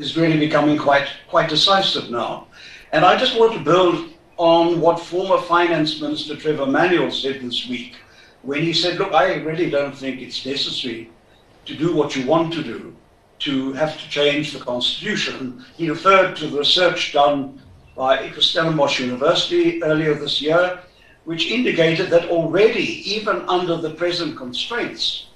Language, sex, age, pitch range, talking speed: English, male, 60-79, 135-165 Hz, 160 wpm